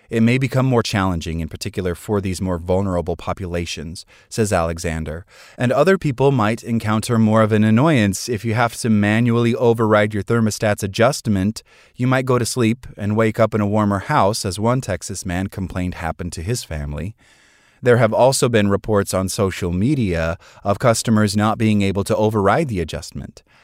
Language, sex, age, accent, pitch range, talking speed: English, male, 30-49, American, 95-115 Hz, 180 wpm